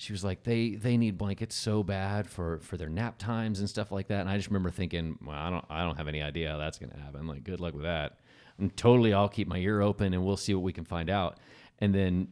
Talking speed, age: 285 wpm, 40-59